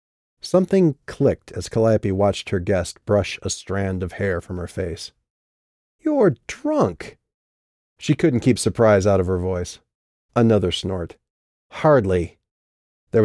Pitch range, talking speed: 90-125 Hz, 130 wpm